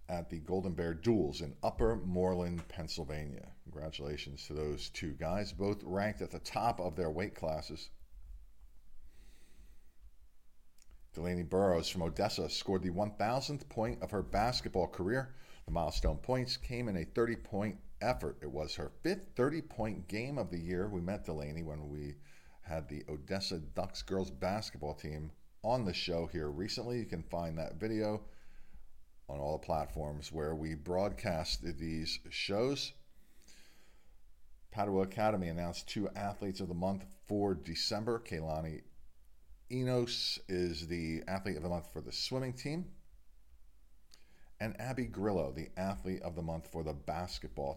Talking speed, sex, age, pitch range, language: 145 wpm, male, 40-59, 75-105 Hz, English